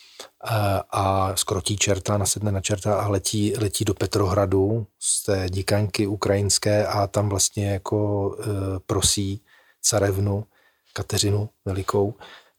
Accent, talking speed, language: native, 105 wpm, Czech